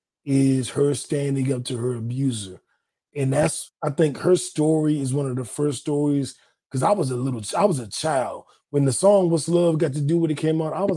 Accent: American